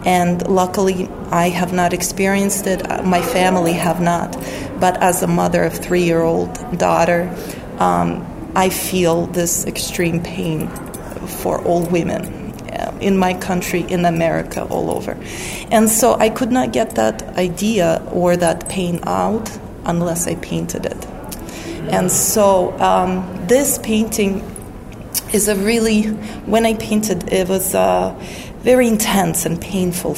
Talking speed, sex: 135 wpm, female